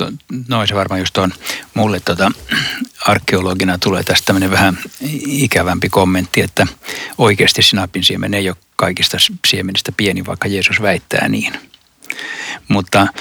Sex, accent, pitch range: male, native, 95-115 Hz